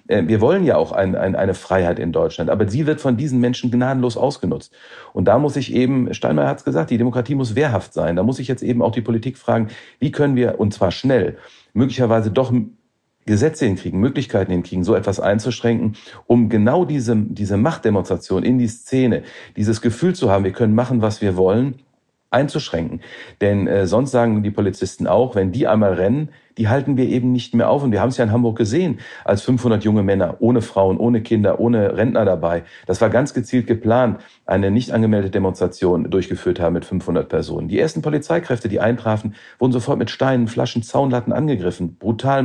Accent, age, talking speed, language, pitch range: German, 40-59, 195 wpm, German, 105-125 Hz